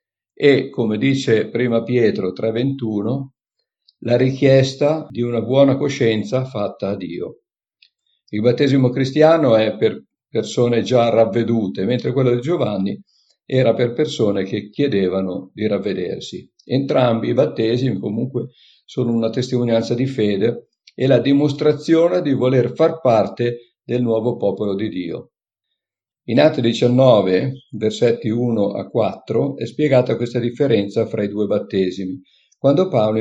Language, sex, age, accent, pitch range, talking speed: Italian, male, 50-69, native, 110-135 Hz, 130 wpm